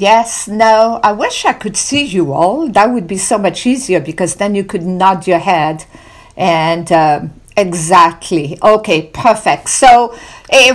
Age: 50-69